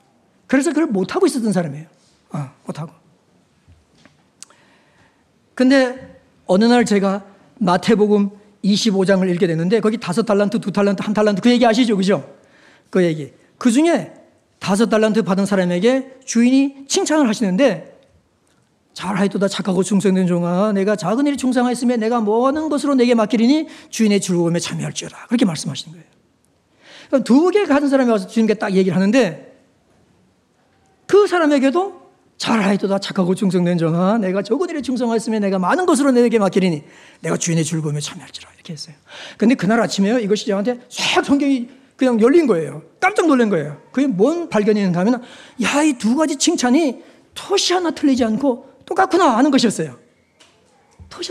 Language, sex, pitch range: Korean, male, 190-275 Hz